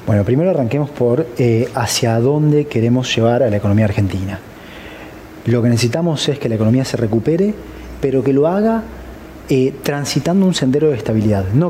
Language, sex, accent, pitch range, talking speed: Spanish, male, Argentinian, 115-150 Hz, 170 wpm